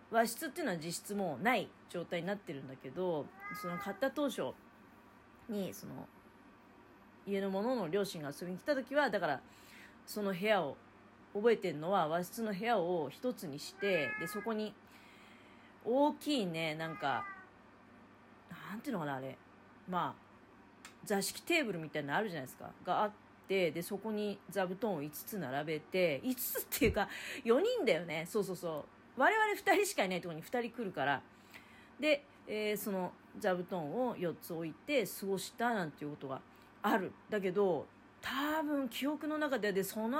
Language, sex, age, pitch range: Japanese, female, 40-59, 175-260 Hz